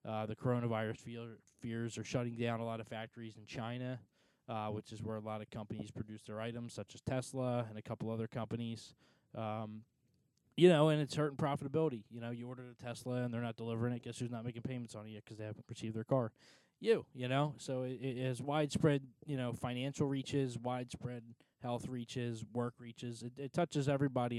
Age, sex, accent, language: 20-39, male, American, English